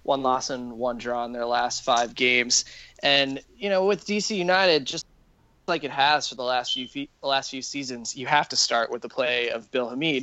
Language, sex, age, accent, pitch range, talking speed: English, male, 20-39, American, 125-150 Hz, 230 wpm